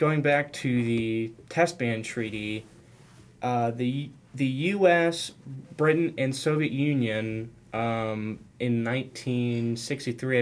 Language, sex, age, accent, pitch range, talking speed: English, male, 10-29, American, 110-140 Hz, 105 wpm